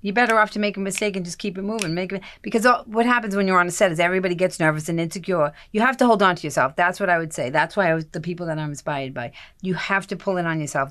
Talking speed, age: 325 wpm, 40-59